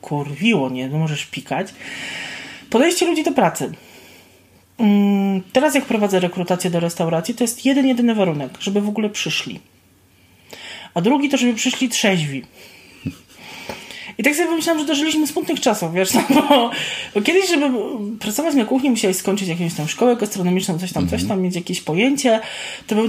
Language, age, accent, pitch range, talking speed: Polish, 20-39, native, 190-260 Hz, 160 wpm